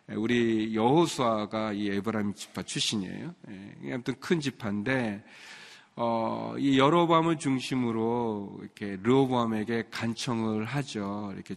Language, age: Korean, 40-59